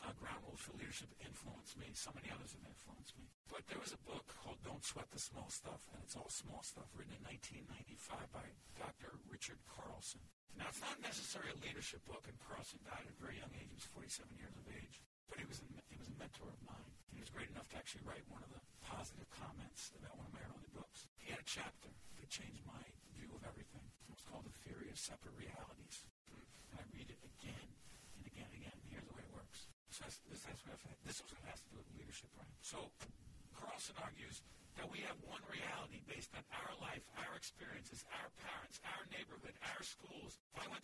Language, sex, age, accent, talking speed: English, male, 50-69, American, 205 wpm